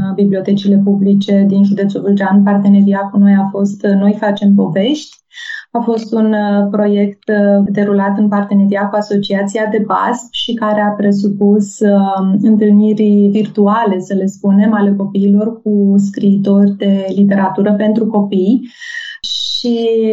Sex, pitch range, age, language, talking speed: female, 200-220 Hz, 20-39, Romanian, 125 wpm